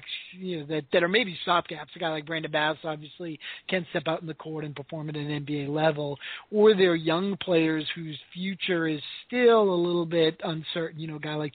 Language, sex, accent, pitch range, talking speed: English, male, American, 155-180 Hz, 220 wpm